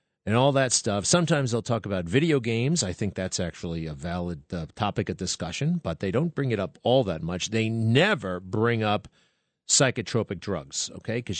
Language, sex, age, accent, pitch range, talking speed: English, male, 40-59, American, 100-145 Hz, 195 wpm